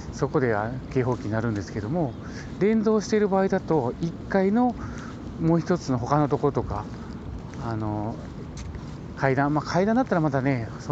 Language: Japanese